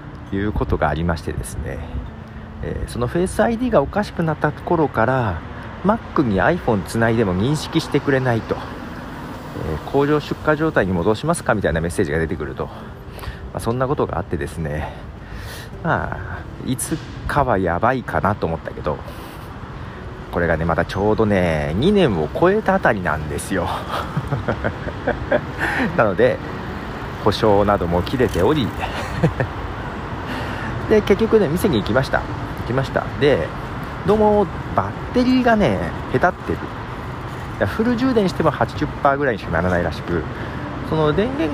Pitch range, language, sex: 95-160 Hz, Japanese, male